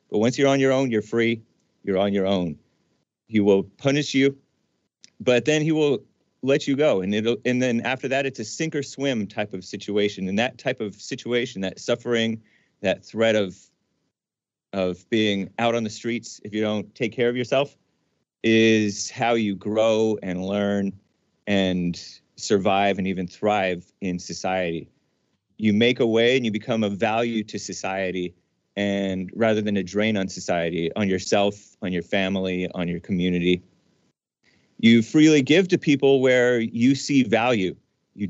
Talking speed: 170 wpm